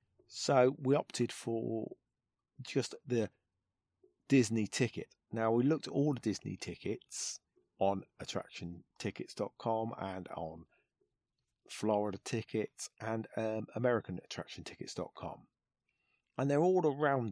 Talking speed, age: 100 wpm, 40-59